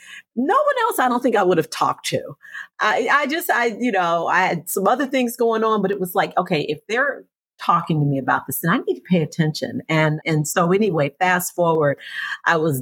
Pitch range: 135-175 Hz